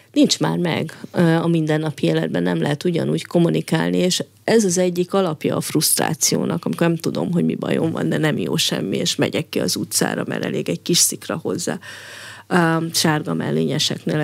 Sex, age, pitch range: female, 30-49, 155-185 Hz